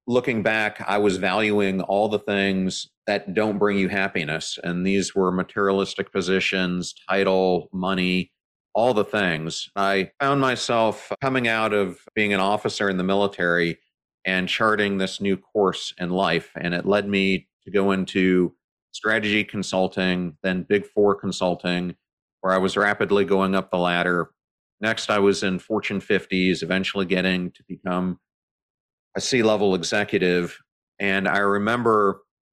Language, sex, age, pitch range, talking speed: English, male, 40-59, 90-105 Hz, 145 wpm